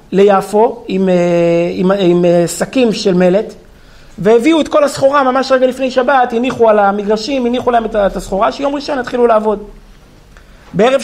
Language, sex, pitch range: Hebrew, male, 190-245 Hz